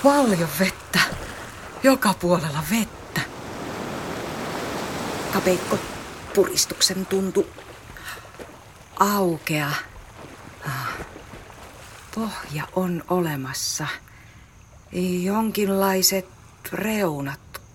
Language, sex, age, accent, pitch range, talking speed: Finnish, female, 40-59, native, 155-195 Hz, 45 wpm